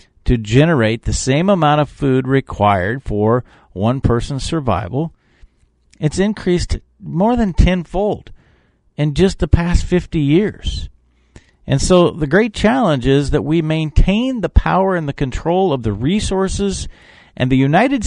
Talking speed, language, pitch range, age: 145 wpm, English, 115-180 Hz, 50-69